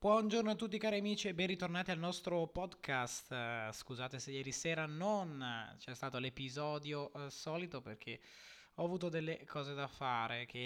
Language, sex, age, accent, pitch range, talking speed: Italian, male, 20-39, native, 120-155 Hz, 160 wpm